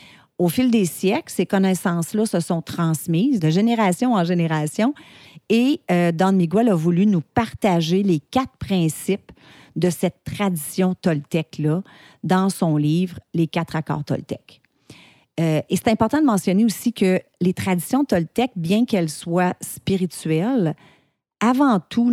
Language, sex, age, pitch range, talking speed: French, female, 40-59, 165-210 Hz, 145 wpm